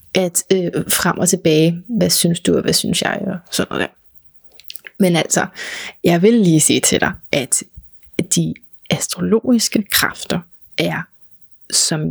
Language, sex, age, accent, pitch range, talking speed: Danish, female, 30-49, native, 190-225 Hz, 150 wpm